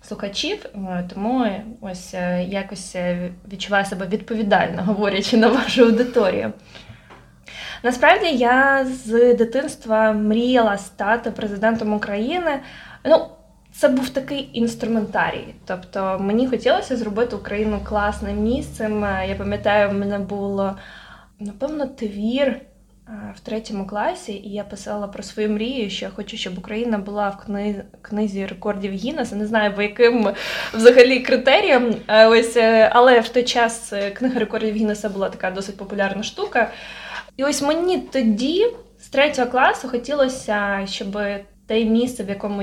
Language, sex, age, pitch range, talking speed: Ukrainian, female, 20-39, 205-255 Hz, 125 wpm